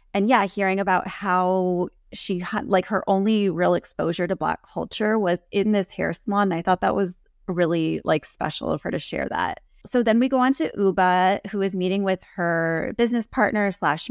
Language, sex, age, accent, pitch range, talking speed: English, female, 20-39, American, 180-215 Hz, 200 wpm